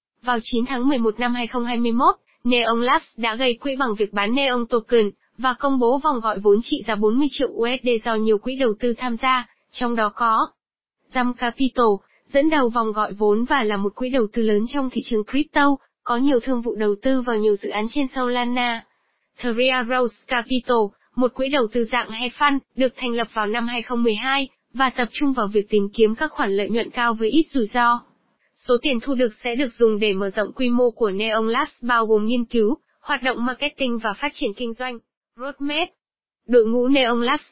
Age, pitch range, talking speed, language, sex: 20-39, 225-265 Hz, 210 wpm, Vietnamese, female